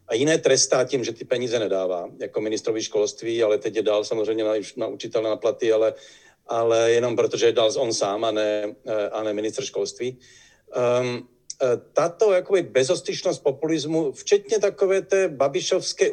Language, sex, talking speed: Czech, male, 155 wpm